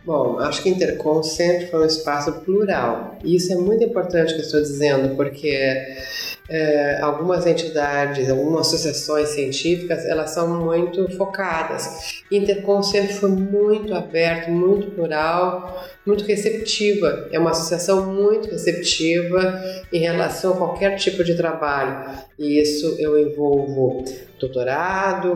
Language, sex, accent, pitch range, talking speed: Portuguese, female, Brazilian, 155-195 Hz, 130 wpm